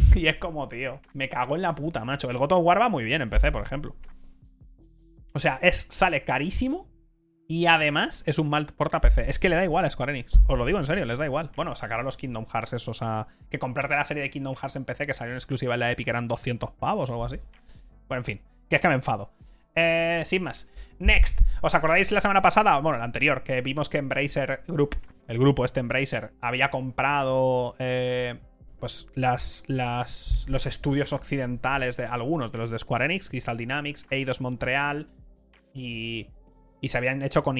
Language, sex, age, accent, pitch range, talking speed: Spanish, male, 20-39, Spanish, 115-145 Hz, 215 wpm